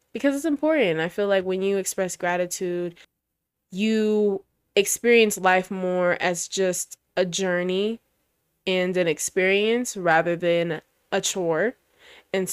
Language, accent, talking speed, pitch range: English, American, 125 wpm, 175-200 Hz